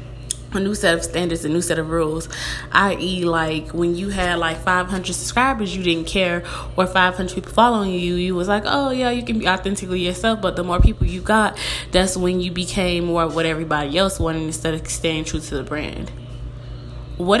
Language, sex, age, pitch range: English, female, 20-39, 160-190 Hz